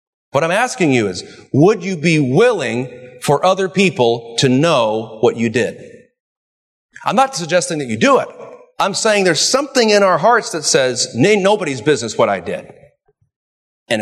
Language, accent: English, American